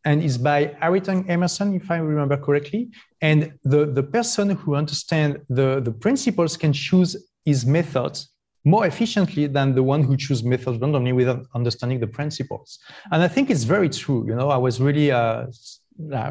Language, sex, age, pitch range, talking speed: English, male, 30-49, 135-185 Hz, 175 wpm